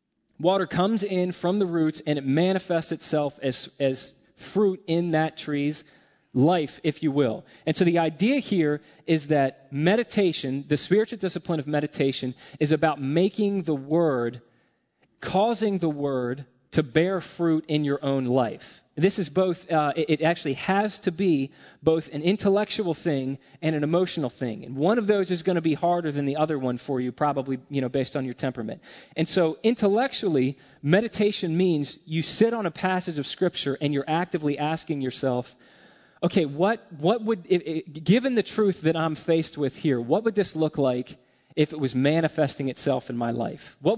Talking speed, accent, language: 180 wpm, American, English